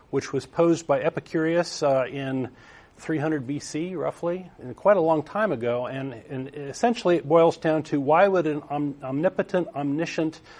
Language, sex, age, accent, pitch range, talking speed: English, male, 50-69, American, 135-165 Hz, 160 wpm